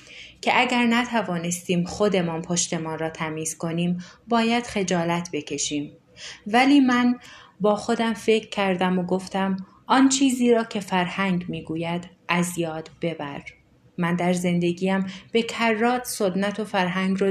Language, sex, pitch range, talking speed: Persian, female, 170-205 Hz, 130 wpm